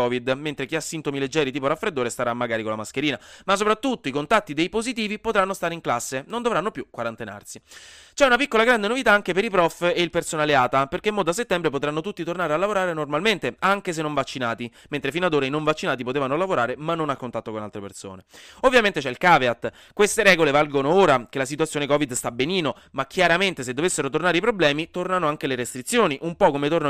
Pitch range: 125-175 Hz